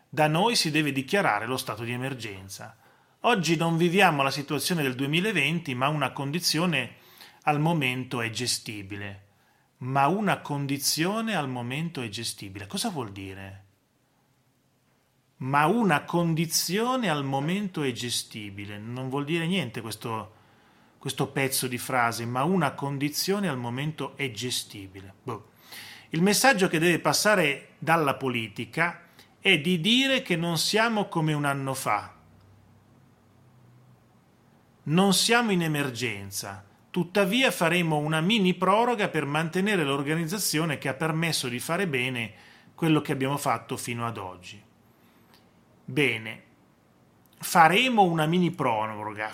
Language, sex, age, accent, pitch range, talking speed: Italian, male, 30-49, native, 120-170 Hz, 125 wpm